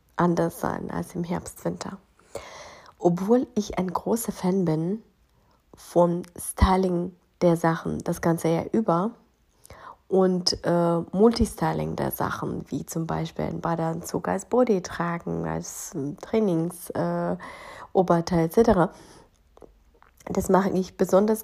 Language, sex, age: German, female, 30-49